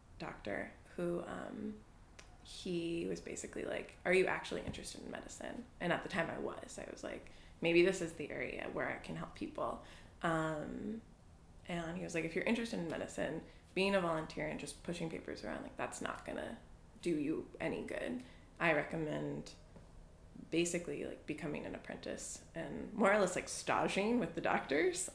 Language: English